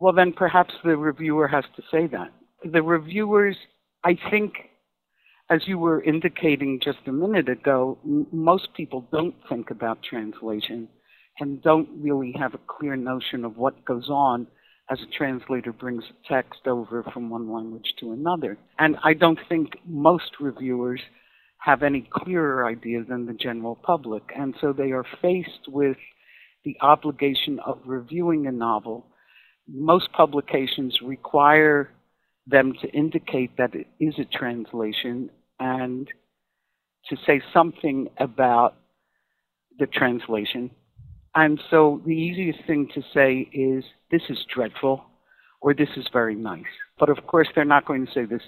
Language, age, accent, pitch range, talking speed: English, 60-79, American, 125-155 Hz, 145 wpm